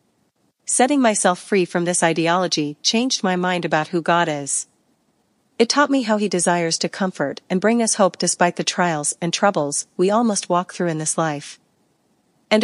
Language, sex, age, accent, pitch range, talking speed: English, female, 40-59, American, 170-205 Hz, 185 wpm